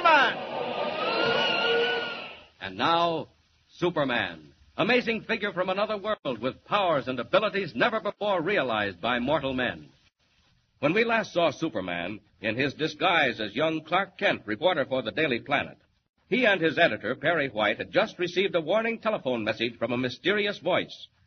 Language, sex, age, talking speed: English, male, 60-79, 145 wpm